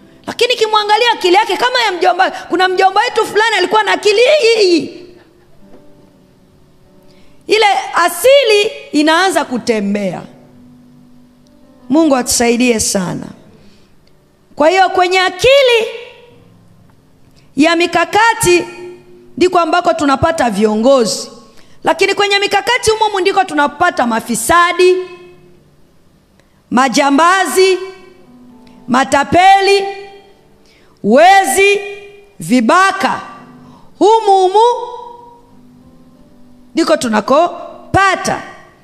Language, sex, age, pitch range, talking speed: Swahili, female, 30-49, 285-410 Hz, 75 wpm